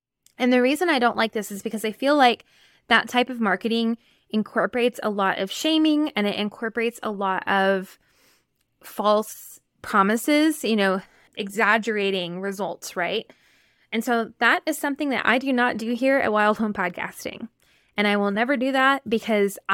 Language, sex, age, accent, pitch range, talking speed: English, female, 20-39, American, 210-250 Hz, 170 wpm